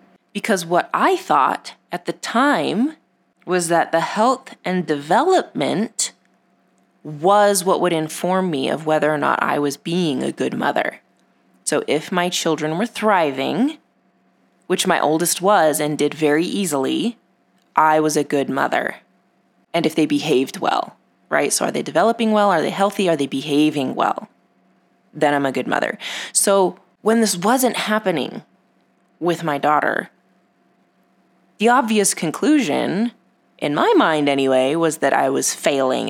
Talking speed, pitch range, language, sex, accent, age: 150 wpm, 155-215 Hz, English, female, American, 20-39